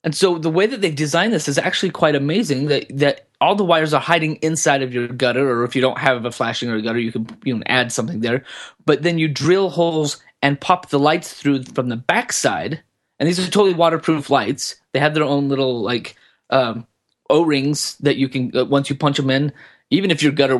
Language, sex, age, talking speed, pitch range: English, male, 30-49, 235 wpm, 120-150 Hz